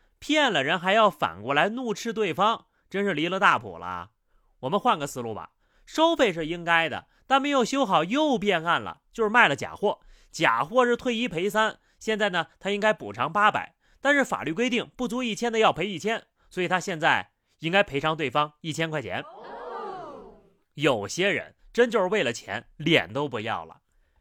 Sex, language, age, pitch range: male, Chinese, 30-49, 170-265 Hz